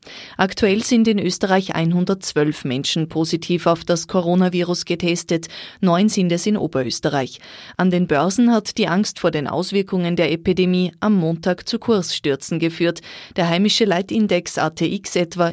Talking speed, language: 145 wpm, German